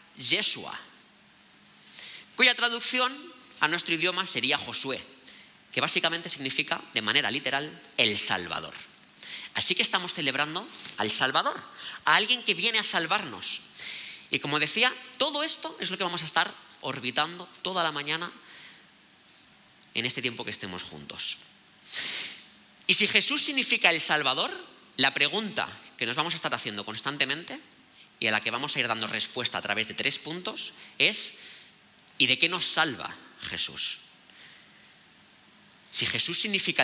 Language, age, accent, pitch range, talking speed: Spanish, 20-39, Spanish, 115-180 Hz, 145 wpm